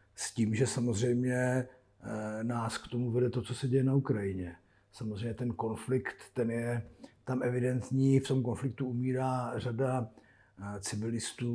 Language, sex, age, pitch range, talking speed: Slovak, male, 50-69, 110-125 Hz, 140 wpm